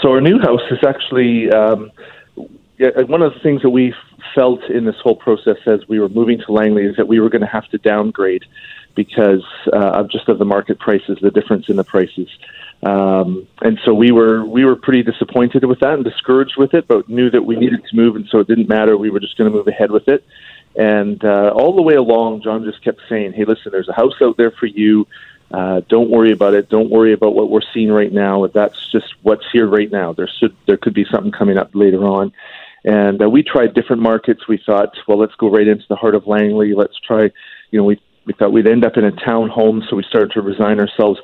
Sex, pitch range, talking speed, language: male, 100-115 Hz, 245 wpm, English